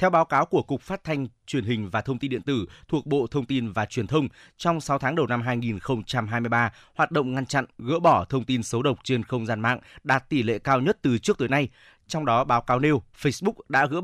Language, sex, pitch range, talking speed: Vietnamese, male, 115-145 Hz, 250 wpm